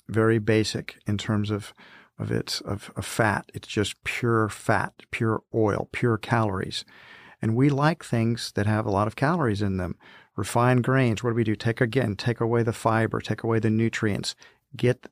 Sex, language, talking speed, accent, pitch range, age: male, English, 180 wpm, American, 105-120 Hz, 50-69